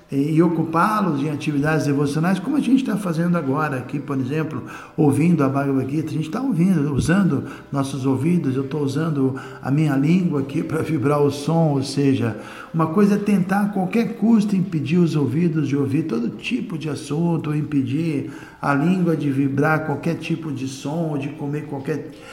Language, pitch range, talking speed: Portuguese, 140-175 Hz, 175 wpm